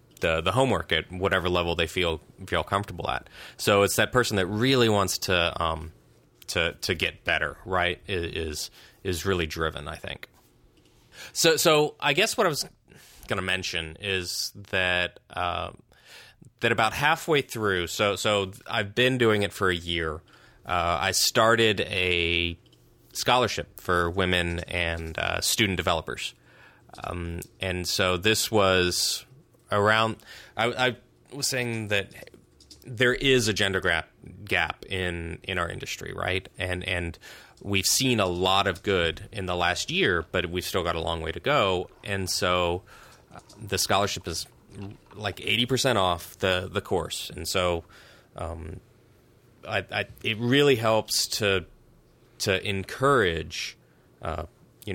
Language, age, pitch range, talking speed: English, 30-49, 85-110 Hz, 150 wpm